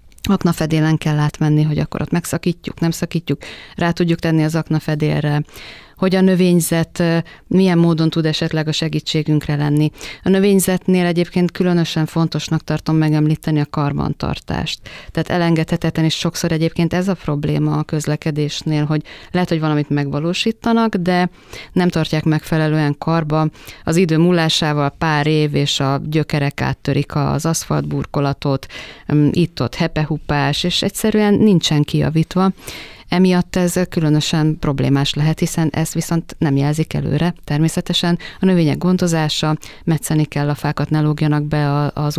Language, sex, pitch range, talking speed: Hungarian, female, 150-175 Hz, 130 wpm